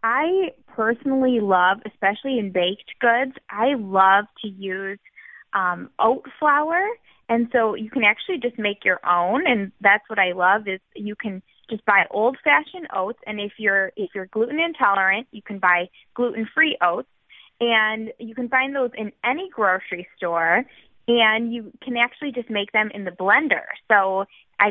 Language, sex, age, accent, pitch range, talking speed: English, female, 20-39, American, 195-235 Hz, 165 wpm